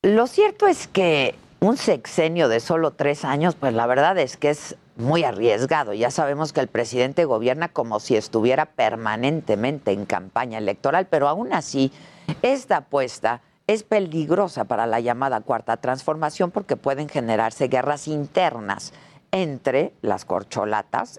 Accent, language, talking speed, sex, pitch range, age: Mexican, Spanish, 145 wpm, female, 120-160 Hz, 50-69